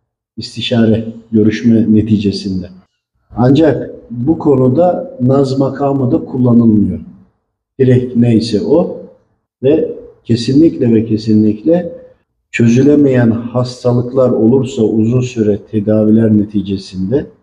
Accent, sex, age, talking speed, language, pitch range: native, male, 50-69, 85 wpm, Turkish, 110-155 Hz